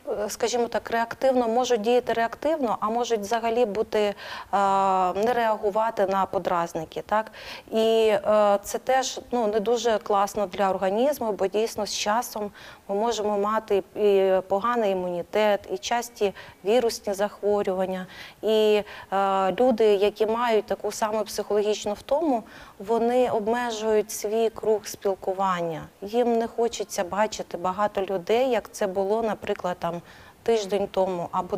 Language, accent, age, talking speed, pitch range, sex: Ukrainian, native, 30-49, 125 wpm, 195-225 Hz, female